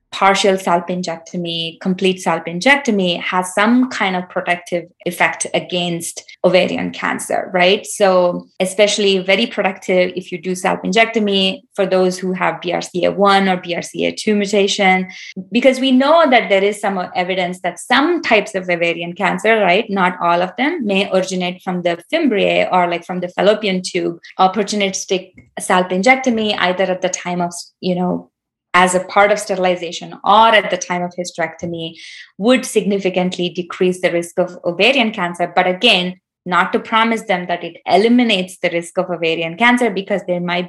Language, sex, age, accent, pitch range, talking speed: English, female, 20-39, Indian, 175-200 Hz, 155 wpm